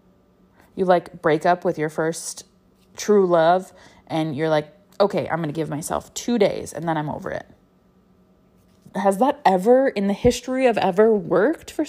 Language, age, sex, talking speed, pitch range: English, 20-39, female, 175 wpm, 160-195 Hz